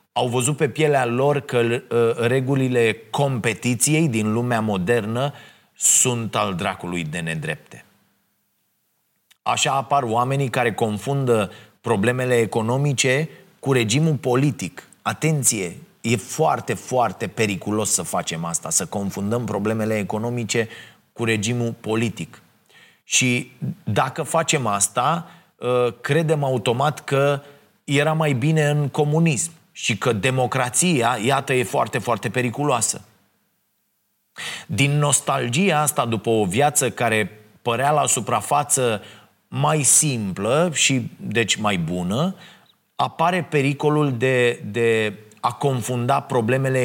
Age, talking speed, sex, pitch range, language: 30-49, 110 wpm, male, 115-145 Hz, Romanian